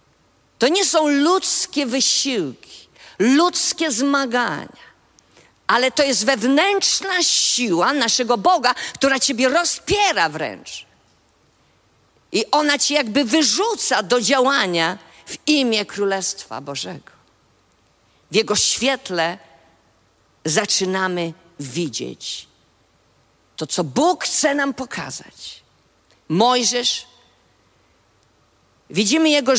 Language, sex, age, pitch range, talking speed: Polish, female, 50-69, 175-270 Hz, 85 wpm